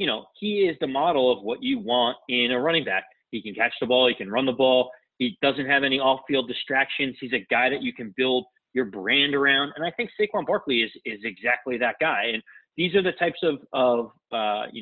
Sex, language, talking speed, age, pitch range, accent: male, English, 240 wpm, 30-49, 130-170 Hz, American